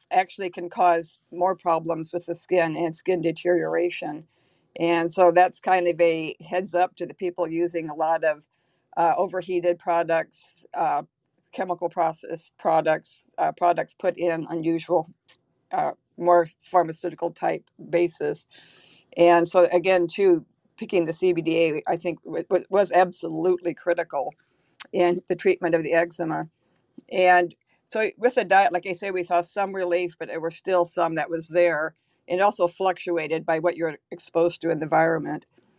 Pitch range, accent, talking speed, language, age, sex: 165-185 Hz, American, 155 wpm, English, 50-69, female